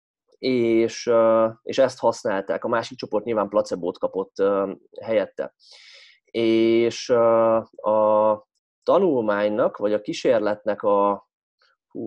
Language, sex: Hungarian, male